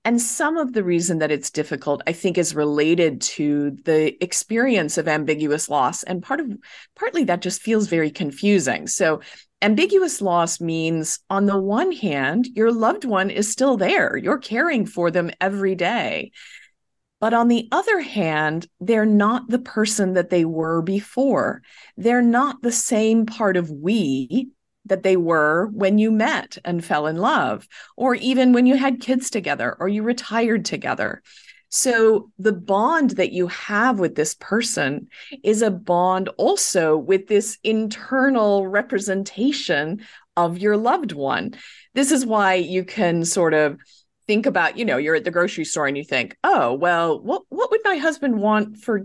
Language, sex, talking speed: English, female, 170 wpm